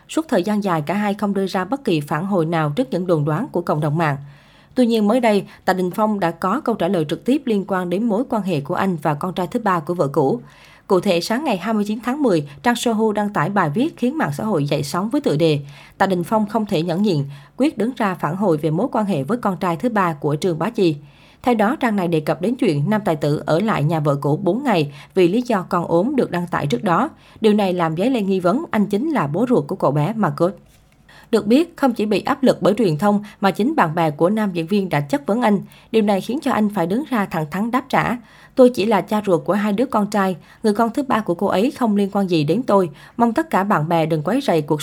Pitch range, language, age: 165-220 Hz, Vietnamese, 20-39